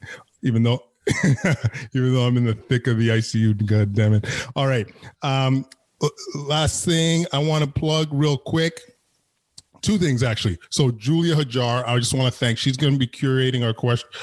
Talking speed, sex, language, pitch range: 175 wpm, male, English, 115-135 Hz